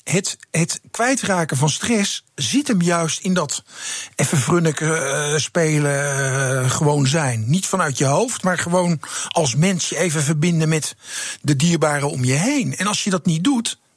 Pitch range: 140-205 Hz